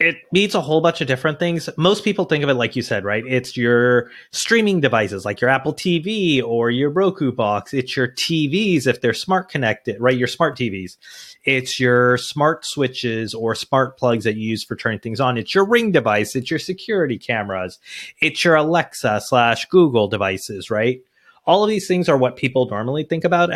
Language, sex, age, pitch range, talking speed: English, male, 30-49, 120-165 Hz, 200 wpm